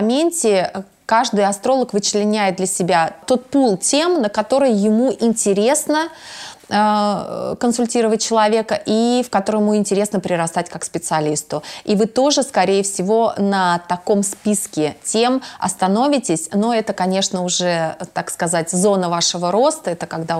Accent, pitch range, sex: native, 180-235 Hz, female